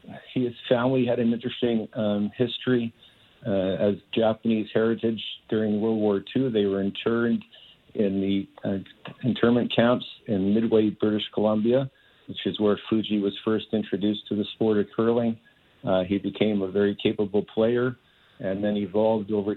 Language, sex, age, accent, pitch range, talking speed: English, male, 50-69, American, 100-110 Hz, 155 wpm